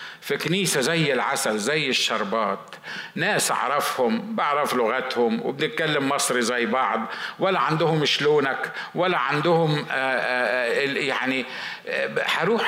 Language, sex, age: Arabic, male, 50-69